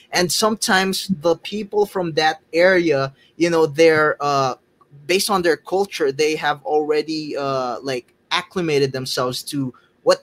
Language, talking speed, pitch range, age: English, 140 wpm, 125-160 Hz, 20-39